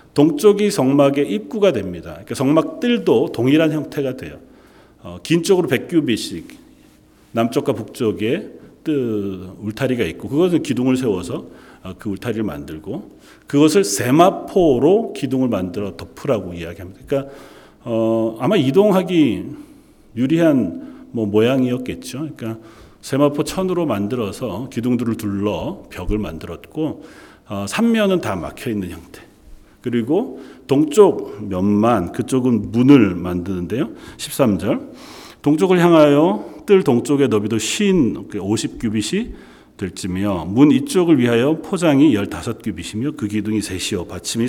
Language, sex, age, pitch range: Korean, male, 40-59, 105-155 Hz